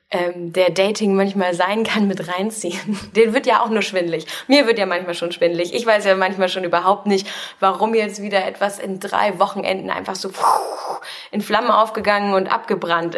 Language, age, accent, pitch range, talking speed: German, 20-39, German, 170-200 Hz, 185 wpm